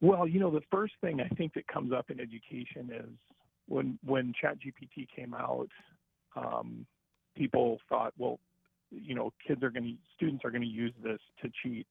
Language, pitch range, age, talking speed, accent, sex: English, 115-135 Hz, 40-59, 175 wpm, American, male